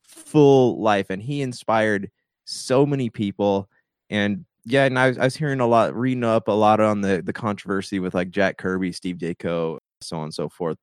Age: 20-39